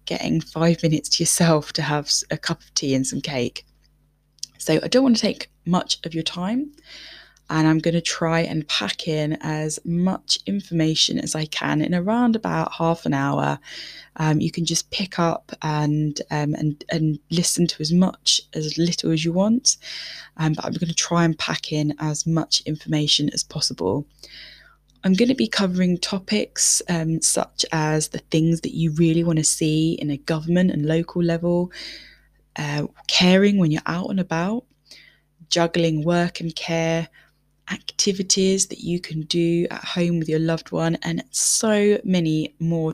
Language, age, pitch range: English, 10-29, 155-175 Hz